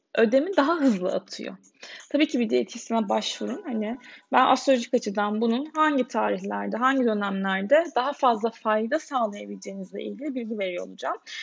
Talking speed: 140 wpm